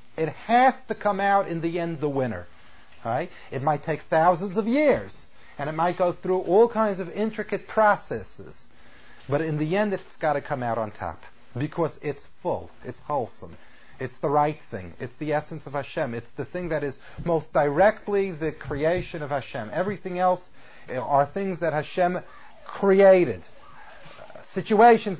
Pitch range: 135-185 Hz